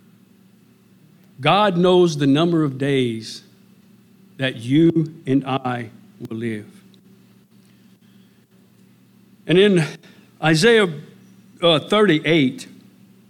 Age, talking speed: 60-79, 75 wpm